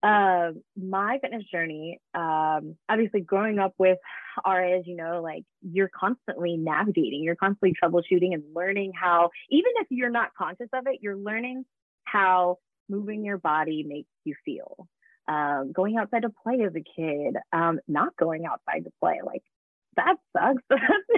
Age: 20-39